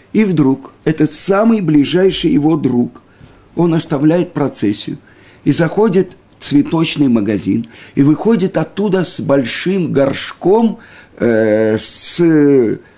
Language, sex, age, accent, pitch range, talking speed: Russian, male, 50-69, native, 110-180 Hz, 105 wpm